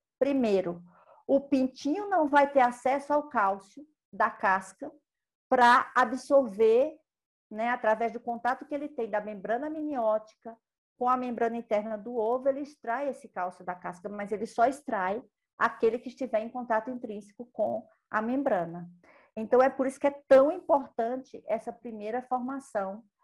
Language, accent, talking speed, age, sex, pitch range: Portuguese, Brazilian, 150 wpm, 50-69, female, 215-270 Hz